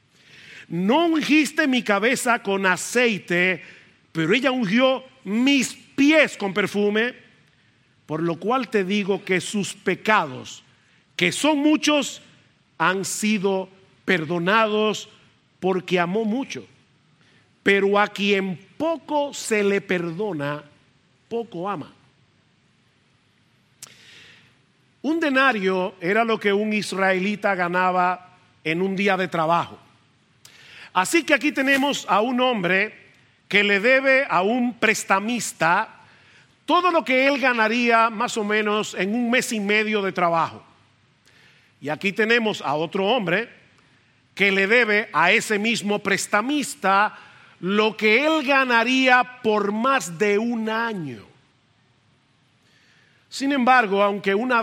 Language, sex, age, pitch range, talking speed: Spanish, male, 50-69, 175-230 Hz, 115 wpm